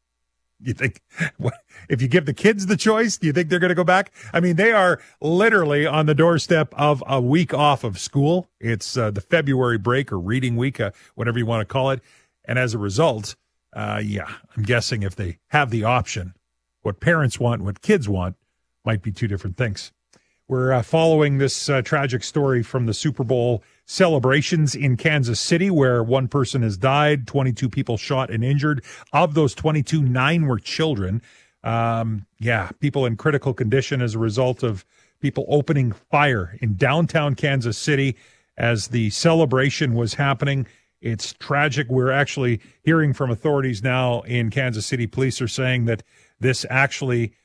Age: 40-59